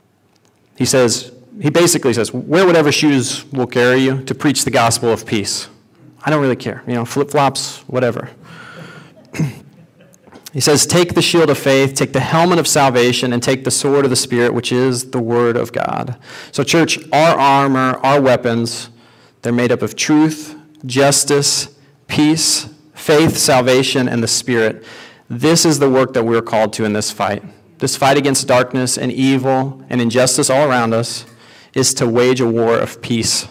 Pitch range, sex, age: 120-140 Hz, male, 40-59